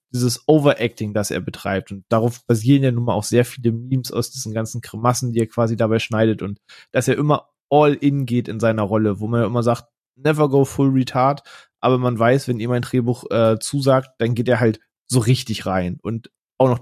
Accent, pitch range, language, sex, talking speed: German, 110-130 Hz, German, male, 220 wpm